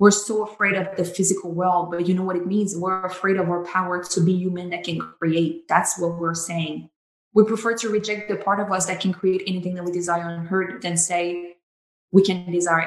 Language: English